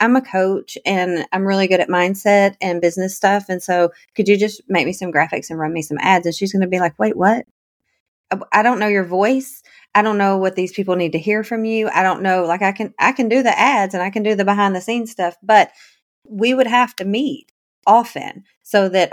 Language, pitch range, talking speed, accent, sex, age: English, 175-210 Hz, 250 wpm, American, female, 30-49